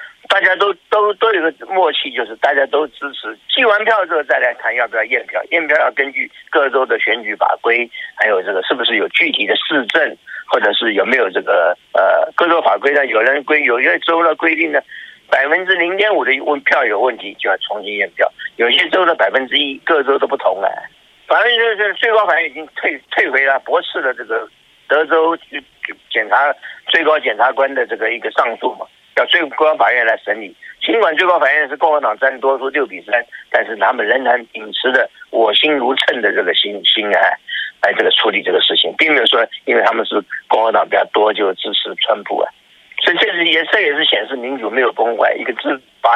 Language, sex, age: Chinese, male, 50-69